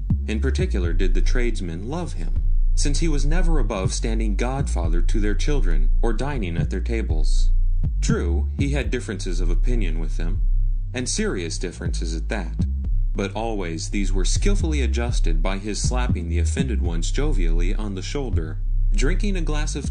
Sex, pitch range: male, 80-100 Hz